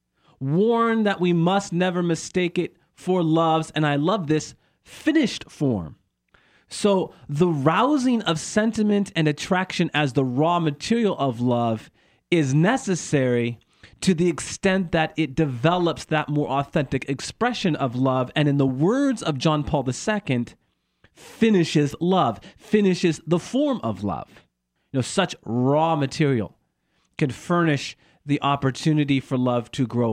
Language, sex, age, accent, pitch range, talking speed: English, male, 40-59, American, 125-170 Hz, 140 wpm